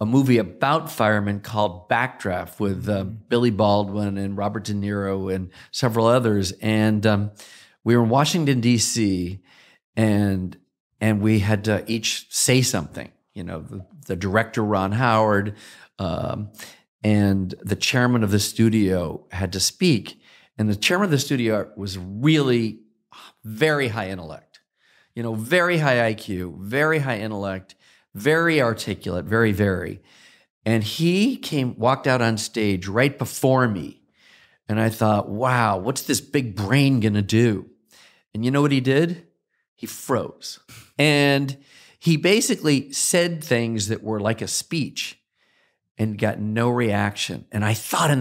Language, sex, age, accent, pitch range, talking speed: English, male, 40-59, American, 105-145 Hz, 150 wpm